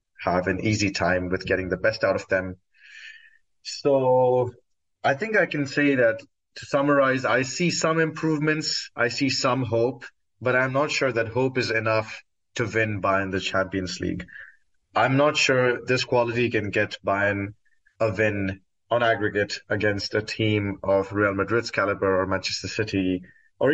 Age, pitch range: 20-39, 100-125 Hz